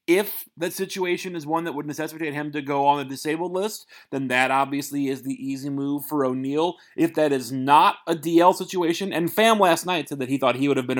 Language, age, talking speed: English, 30-49, 235 wpm